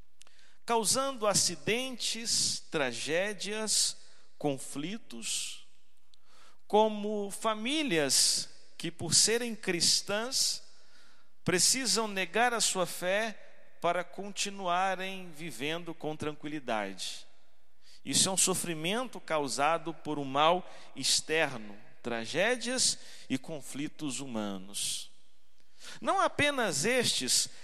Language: Portuguese